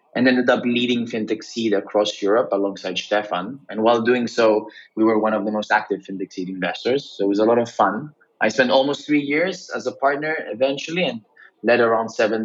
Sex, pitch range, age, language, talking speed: male, 100-120 Hz, 20-39, English, 210 wpm